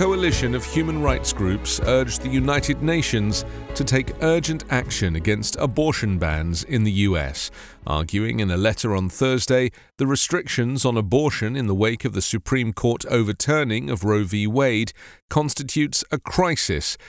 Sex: male